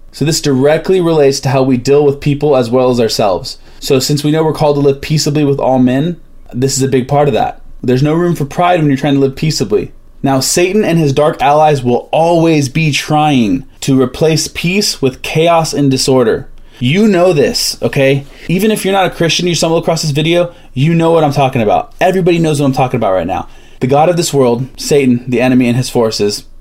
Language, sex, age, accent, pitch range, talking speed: English, male, 20-39, American, 130-165 Hz, 230 wpm